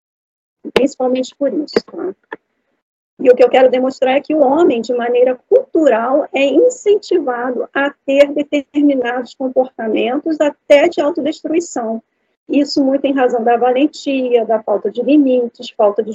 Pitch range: 240-290 Hz